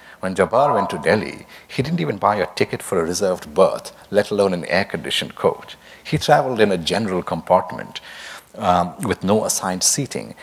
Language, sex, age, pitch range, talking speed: English, male, 60-79, 90-115 Hz, 180 wpm